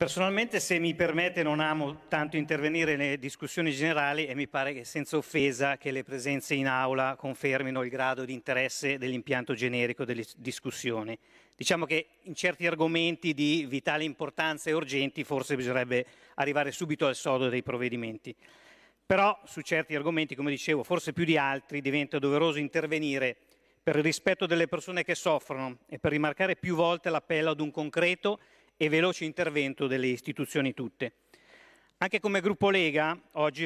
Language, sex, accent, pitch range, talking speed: Italian, male, native, 135-165 Hz, 160 wpm